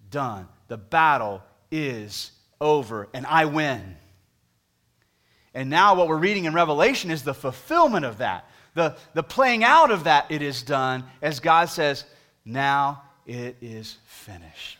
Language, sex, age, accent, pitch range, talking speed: English, male, 30-49, American, 120-165 Hz, 145 wpm